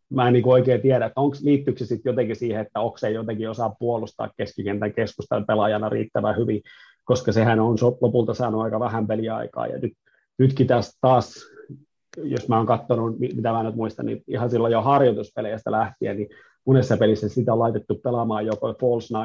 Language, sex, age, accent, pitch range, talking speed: Finnish, male, 30-49, native, 110-120 Hz, 180 wpm